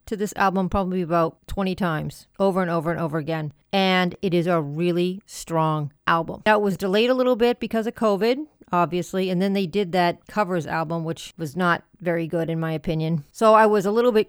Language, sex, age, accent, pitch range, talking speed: English, female, 40-59, American, 165-205 Hz, 215 wpm